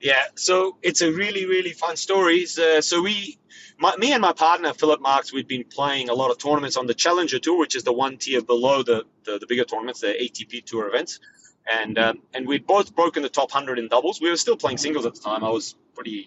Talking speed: 240 wpm